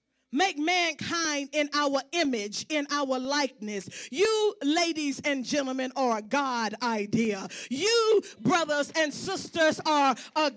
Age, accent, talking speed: 40-59, American, 125 wpm